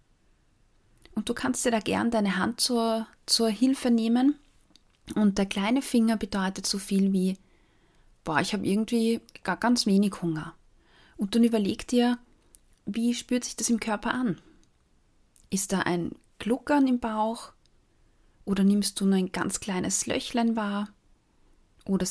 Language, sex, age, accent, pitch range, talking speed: German, female, 30-49, German, 190-245 Hz, 150 wpm